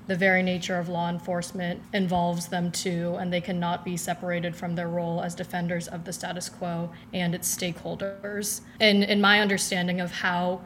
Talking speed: 180 wpm